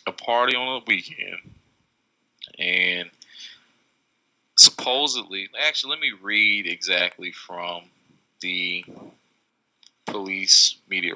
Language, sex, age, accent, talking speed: English, male, 20-39, American, 85 wpm